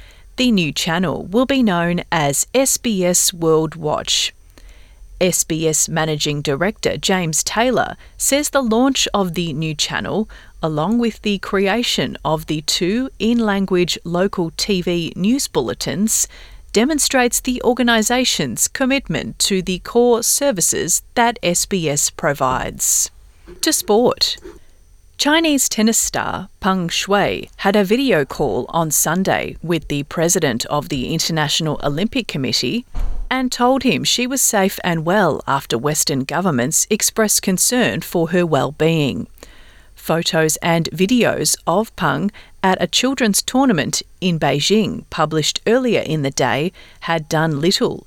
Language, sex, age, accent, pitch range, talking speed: English, female, 30-49, Australian, 160-230 Hz, 125 wpm